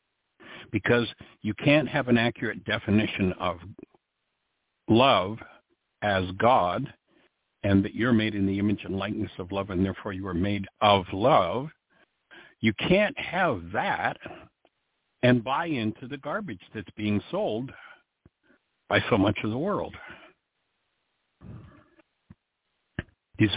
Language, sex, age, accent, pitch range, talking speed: English, male, 60-79, American, 100-135 Hz, 120 wpm